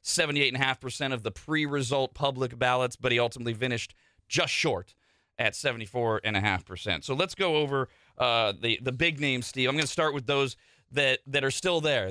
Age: 30-49